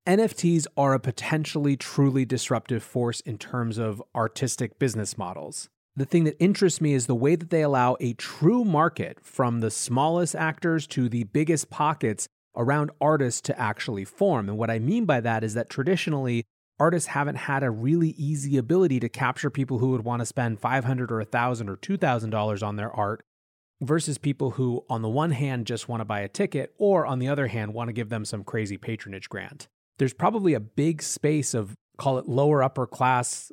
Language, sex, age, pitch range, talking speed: English, male, 30-49, 115-150 Hz, 195 wpm